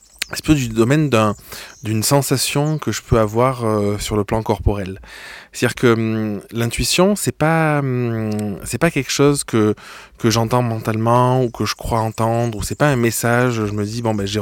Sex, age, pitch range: male, 20-39, 105-125 Hz